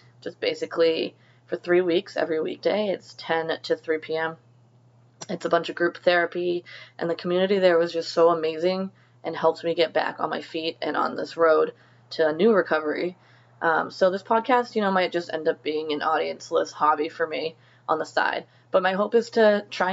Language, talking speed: English, 200 wpm